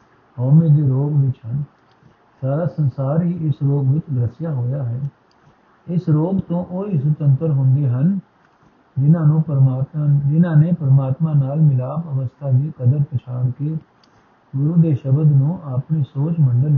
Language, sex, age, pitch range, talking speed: Punjabi, male, 50-69, 135-160 Hz, 145 wpm